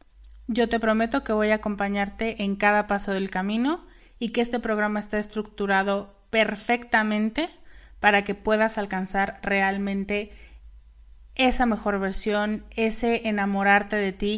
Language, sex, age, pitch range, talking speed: Spanish, female, 30-49, 175-235 Hz, 130 wpm